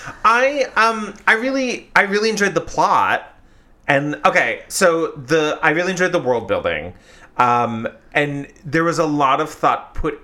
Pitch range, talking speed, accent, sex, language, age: 105-150 Hz, 165 wpm, American, male, English, 30-49